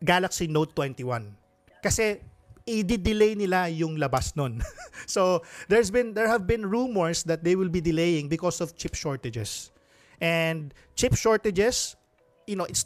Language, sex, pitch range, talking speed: English, male, 145-190 Hz, 145 wpm